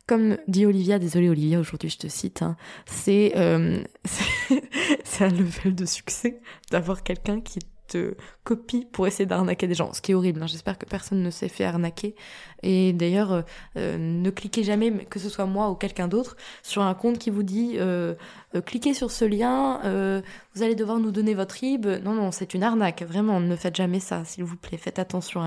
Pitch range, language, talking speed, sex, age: 175-210 Hz, French, 205 wpm, female, 20-39